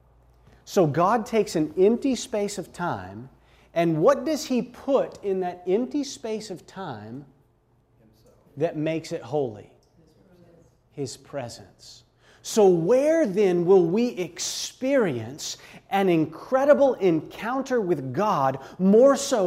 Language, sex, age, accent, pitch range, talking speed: English, male, 30-49, American, 135-210 Hz, 115 wpm